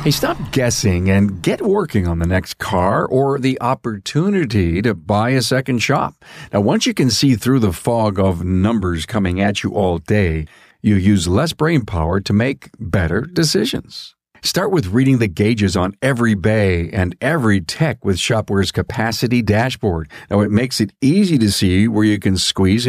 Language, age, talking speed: English, 50-69, 180 wpm